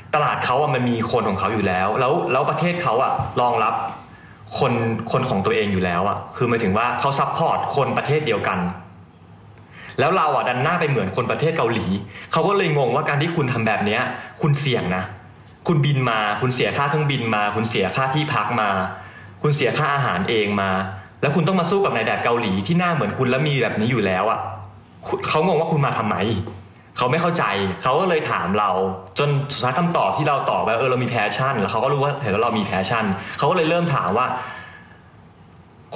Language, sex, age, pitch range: Thai, male, 20-39, 100-140 Hz